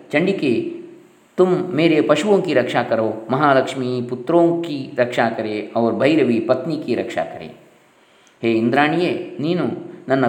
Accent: native